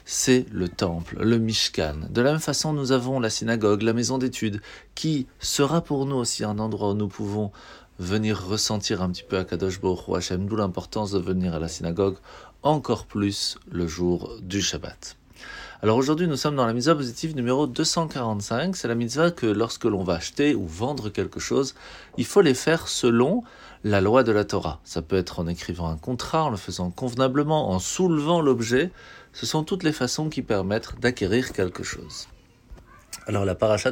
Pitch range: 95-140 Hz